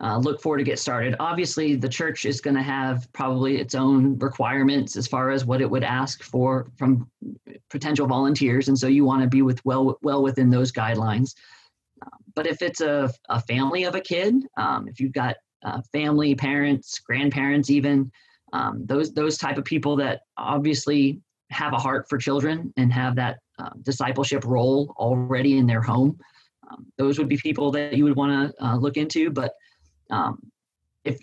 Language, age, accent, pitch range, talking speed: English, 40-59, American, 130-145 Hz, 190 wpm